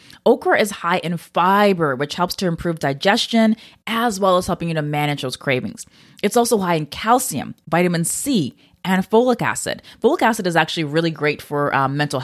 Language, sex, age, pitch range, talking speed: English, female, 20-39, 155-210 Hz, 185 wpm